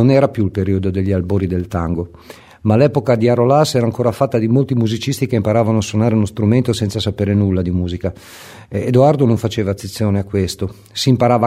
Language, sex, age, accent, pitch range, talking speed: Italian, male, 50-69, native, 105-125 Hz, 200 wpm